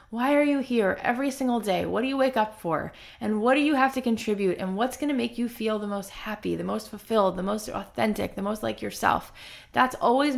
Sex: female